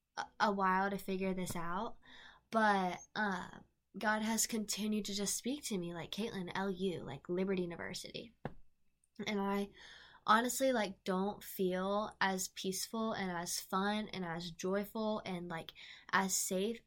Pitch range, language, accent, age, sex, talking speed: 180-210 Hz, English, American, 10-29, female, 140 wpm